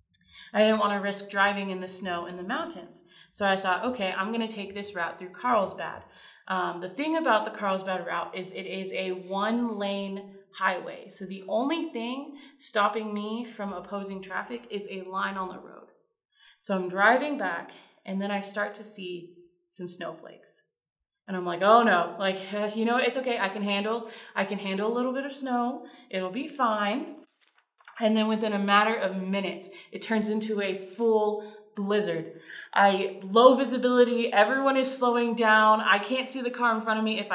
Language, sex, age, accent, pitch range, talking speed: English, female, 20-39, American, 195-240 Hz, 190 wpm